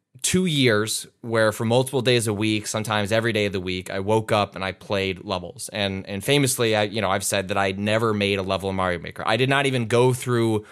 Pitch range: 95-115 Hz